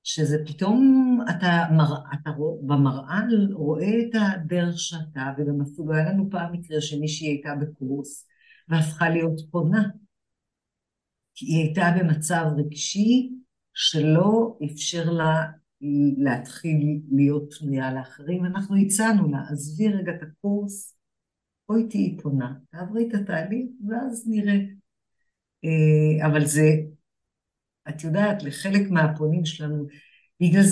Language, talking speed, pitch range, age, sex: Hebrew, 110 wpm, 145-195 Hz, 50-69, female